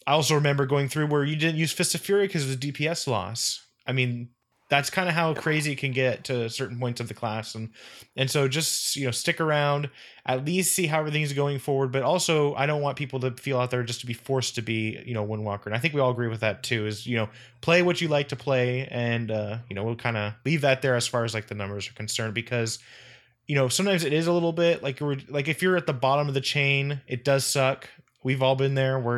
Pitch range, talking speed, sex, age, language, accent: 120-145 Hz, 270 wpm, male, 20-39, English, American